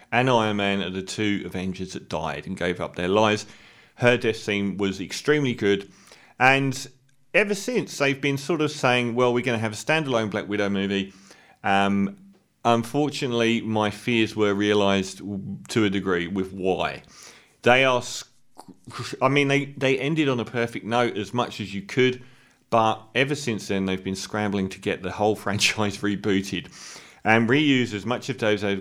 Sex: male